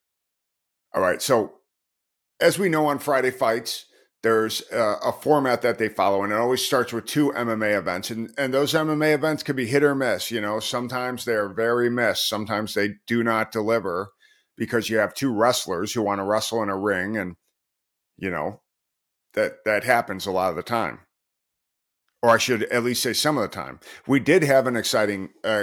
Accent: American